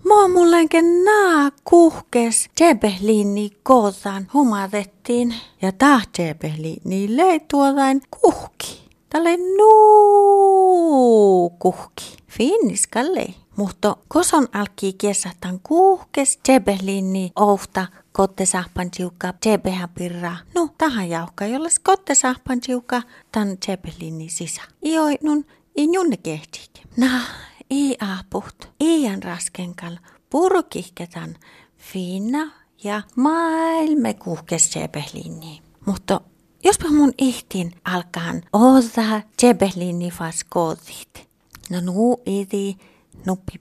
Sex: female